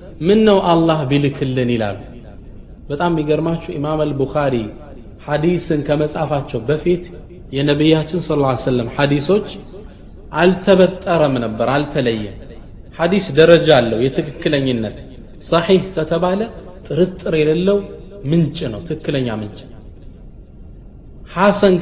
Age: 30-49